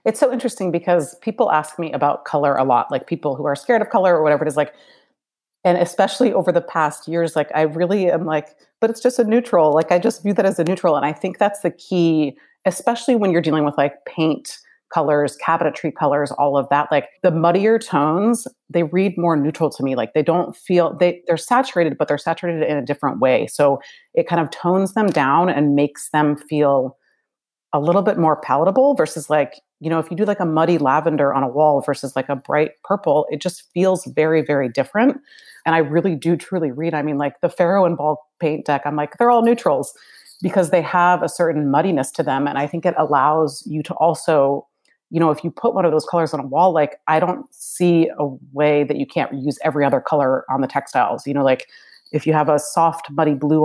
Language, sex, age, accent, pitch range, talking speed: English, female, 30-49, American, 145-180 Hz, 230 wpm